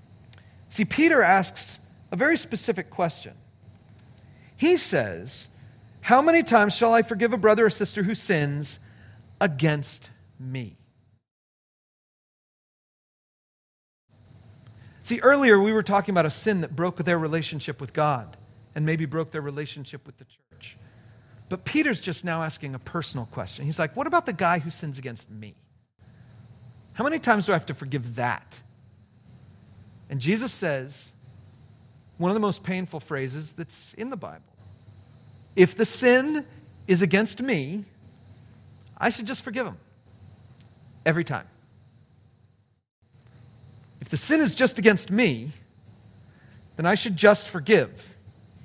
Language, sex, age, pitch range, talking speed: English, male, 40-59, 115-185 Hz, 135 wpm